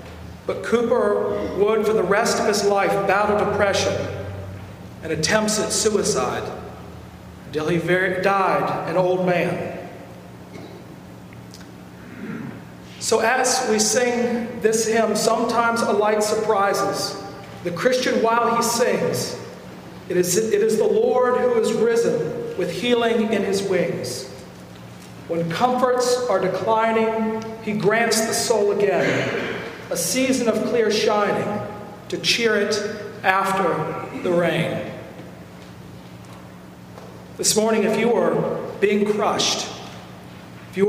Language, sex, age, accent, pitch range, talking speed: English, male, 40-59, American, 160-225 Hz, 115 wpm